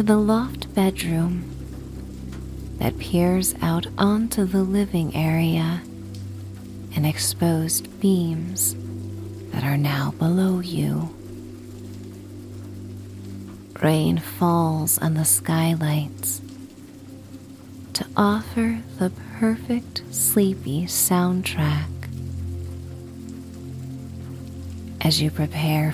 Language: English